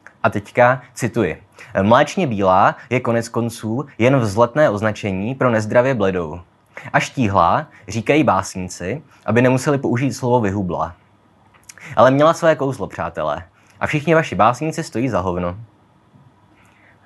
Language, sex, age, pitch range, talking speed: Czech, male, 20-39, 105-120 Hz, 125 wpm